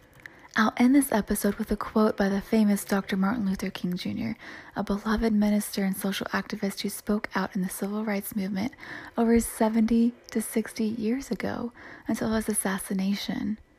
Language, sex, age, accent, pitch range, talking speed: English, female, 20-39, American, 195-225 Hz, 165 wpm